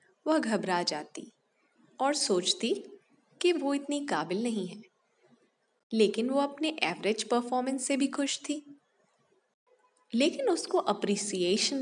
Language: Hindi